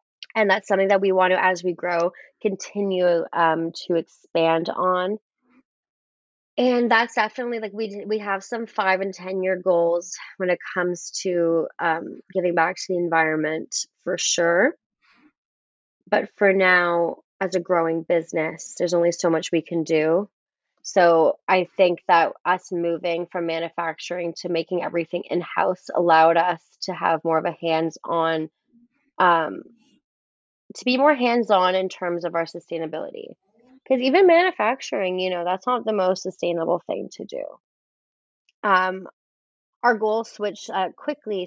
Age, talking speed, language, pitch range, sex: 20-39, 150 wpm, English, 170-195 Hz, female